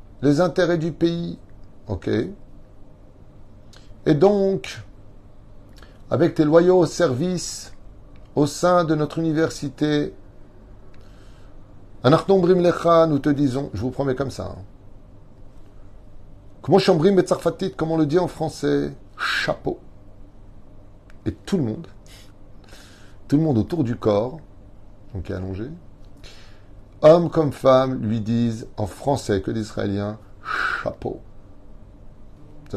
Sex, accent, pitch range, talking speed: male, French, 100-125 Hz, 110 wpm